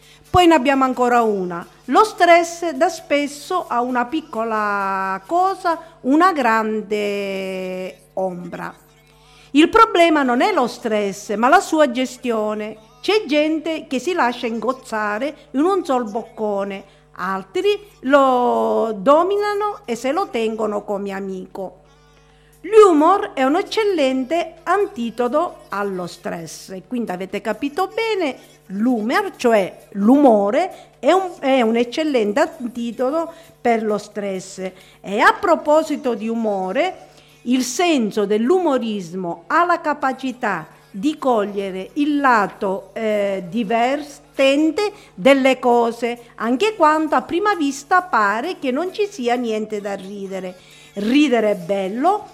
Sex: female